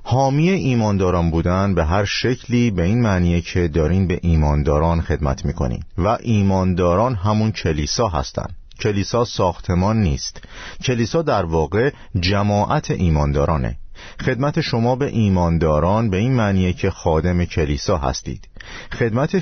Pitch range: 85-115 Hz